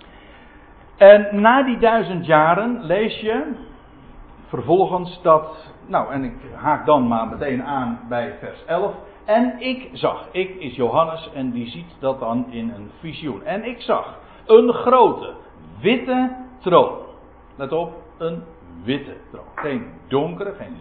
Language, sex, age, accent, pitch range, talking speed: Dutch, male, 60-79, Dutch, 135-225 Hz, 140 wpm